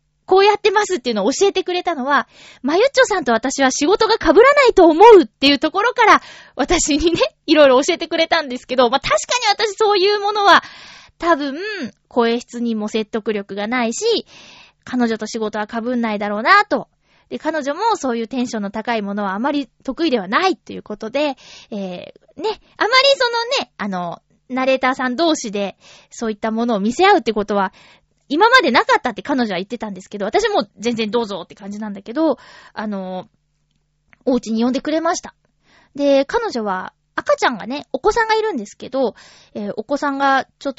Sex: female